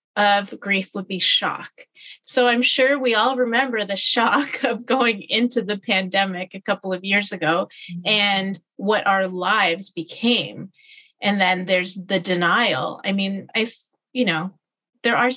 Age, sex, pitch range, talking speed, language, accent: 30-49, female, 185-240 Hz, 155 wpm, English, American